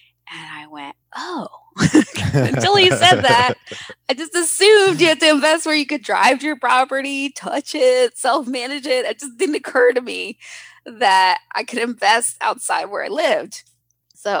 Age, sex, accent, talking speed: 20-39, female, American, 170 wpm